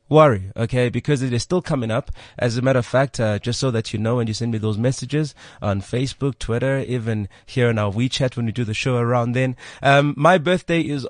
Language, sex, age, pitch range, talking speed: English, male, 30-49, 110-140 Hz, 240 wpm